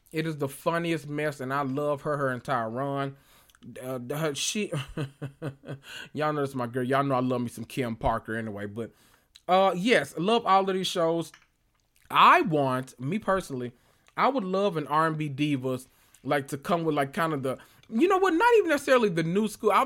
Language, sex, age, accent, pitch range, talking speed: English, male, 20-39, American, 130-185 Hz, 195 wpm